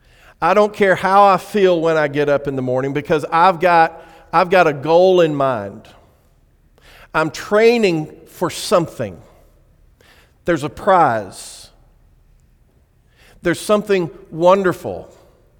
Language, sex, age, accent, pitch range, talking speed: English, male, 50-69, American, 150-205 Hz, 125 wpm